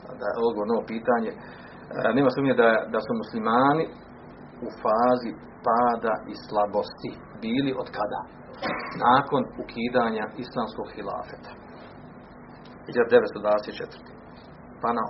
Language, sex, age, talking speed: Croatian, male, 40-59, 105 wpm